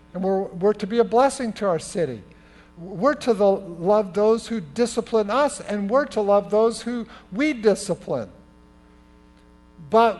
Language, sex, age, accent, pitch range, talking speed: English, male, 50-69, American, 145-215 Hz, 155 wpm